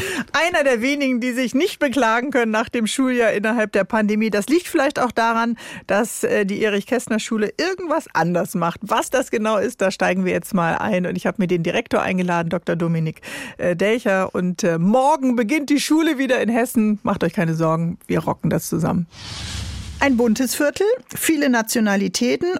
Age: 40-59